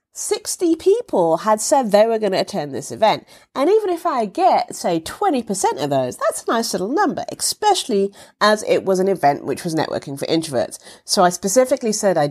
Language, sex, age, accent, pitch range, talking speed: English, female, 30-49, British, 155-220 Hz, 200 wpm